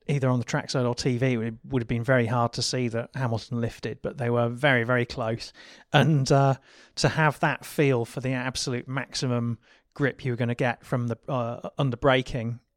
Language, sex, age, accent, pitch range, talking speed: English, male, 30-49, British, 120-140 Hz, 205 wpm